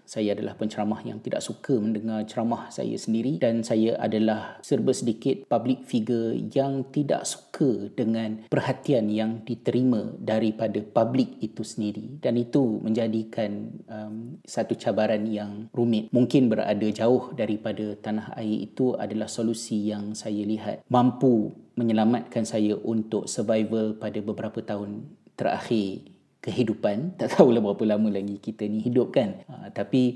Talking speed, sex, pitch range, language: 135 wpm, male, 105-120 Hz, Malay